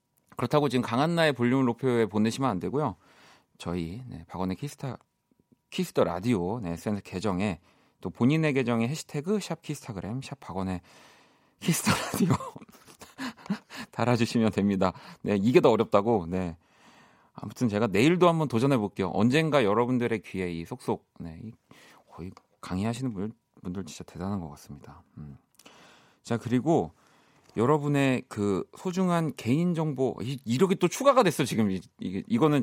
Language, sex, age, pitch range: Korean, male, 40-59, 95-145 Hz